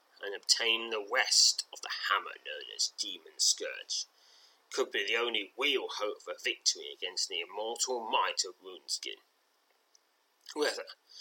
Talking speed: 140 wpm